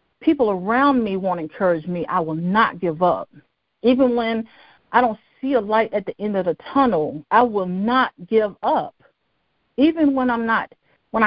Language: English